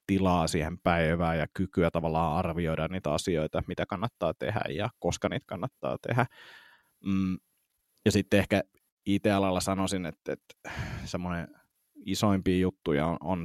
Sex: male